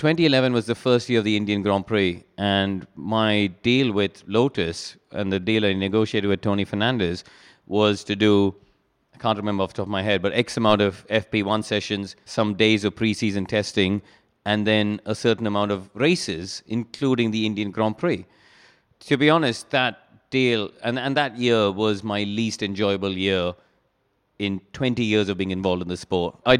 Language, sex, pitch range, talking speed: English, male, 100-115 Hz, 185 wpm